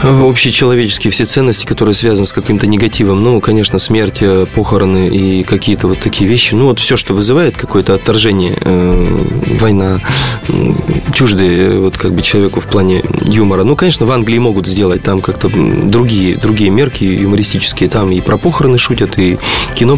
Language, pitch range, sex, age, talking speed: Russian, 100-135 Hz, male, 20-39, 160 wpm